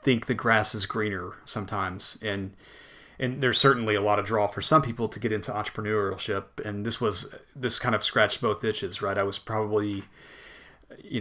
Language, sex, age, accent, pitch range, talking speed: English, male, 40-59, American, 100-115 Hz, 185 wpm